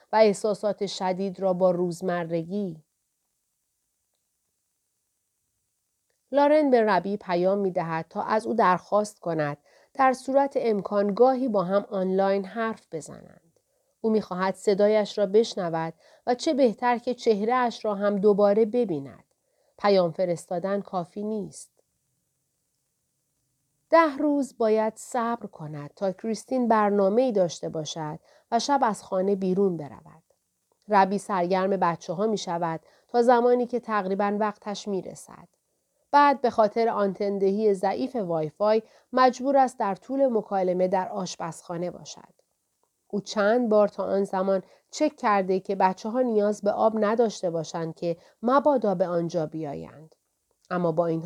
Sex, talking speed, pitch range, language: female, 130 wpm, 175-220 Hz, Persian